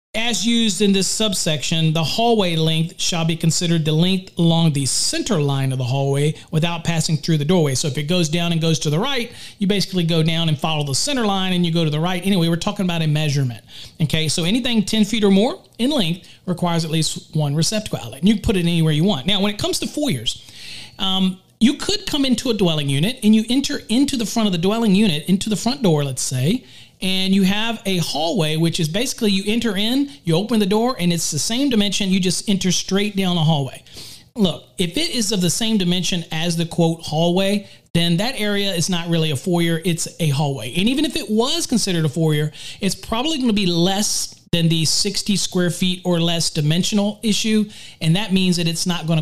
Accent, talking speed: American, 230 wpm